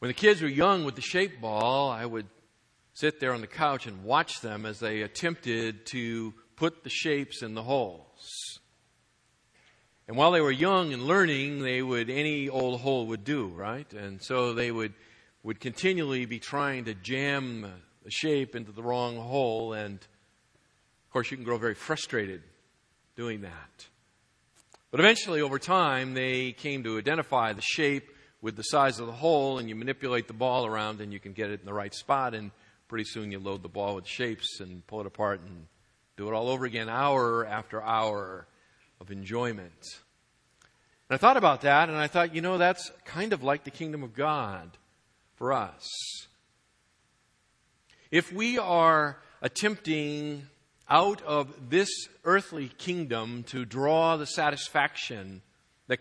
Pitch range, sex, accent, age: 110-145 Hz, male, American, 50-69